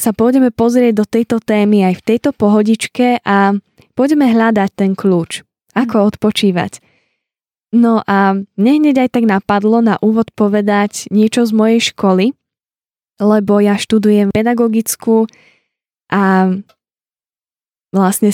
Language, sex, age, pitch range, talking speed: Slovak, female, 10-29, 195-235 Hz, 120 wpm